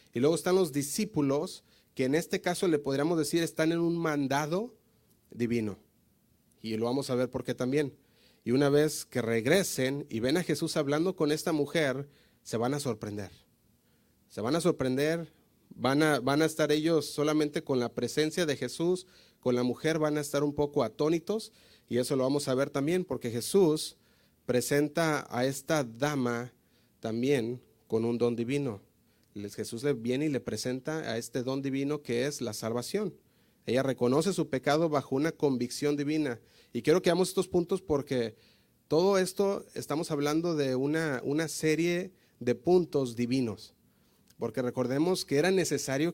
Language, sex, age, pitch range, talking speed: Spanish, male, 30-49, 120-155 Hz, 165 wpm